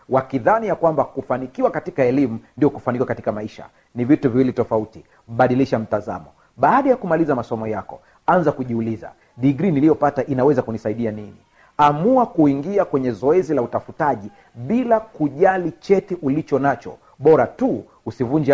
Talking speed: 135 wpm